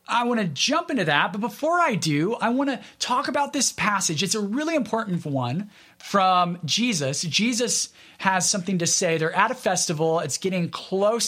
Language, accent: English, American